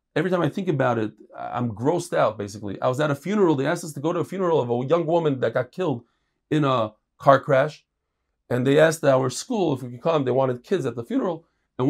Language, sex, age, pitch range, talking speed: English, male, 40-59, 135-190 Hz, 255 wpm